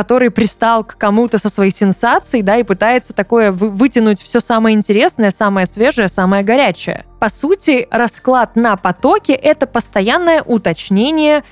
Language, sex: Russian, female